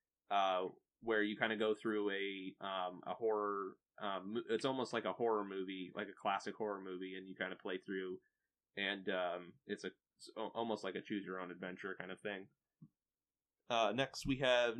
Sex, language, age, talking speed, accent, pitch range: male, English, 20-39, 180 wpm, American, 95-115 Hz